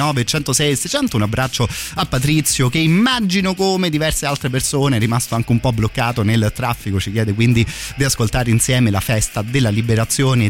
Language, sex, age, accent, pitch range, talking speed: Italian, male, 30-49, native, 110-150 Hz, 165 wpm